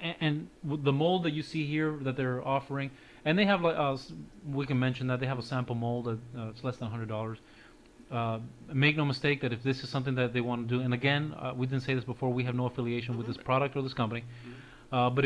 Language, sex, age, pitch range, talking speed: English, male, 30-49, 120-135 Hz, 250 wpm